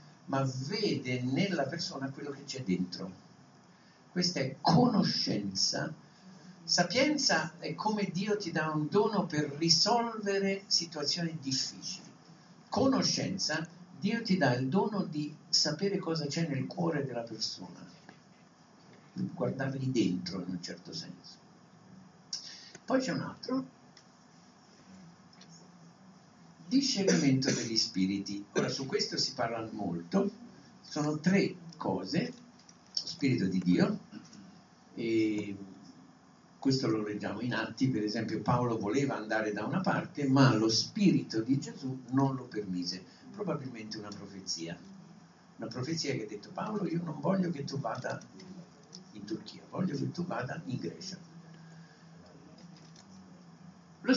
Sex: male